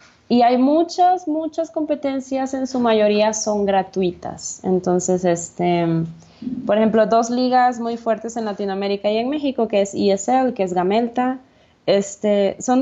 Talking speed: 145 wpm